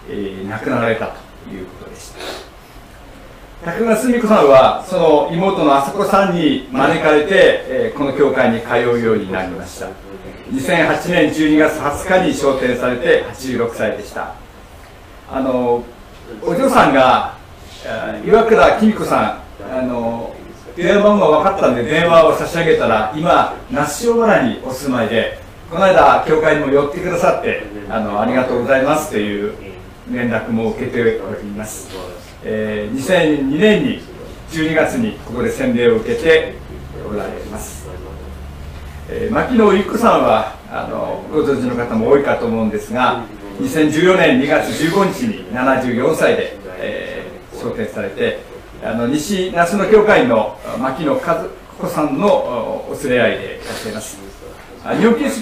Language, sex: Japanese, male